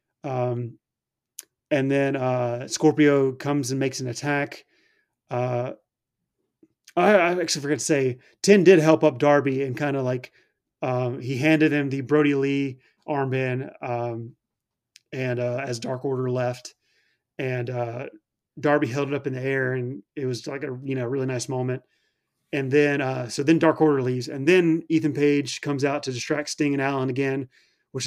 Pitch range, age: 130-155 Hz, 30-49